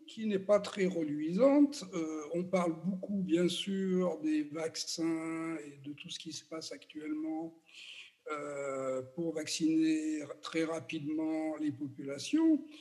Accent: French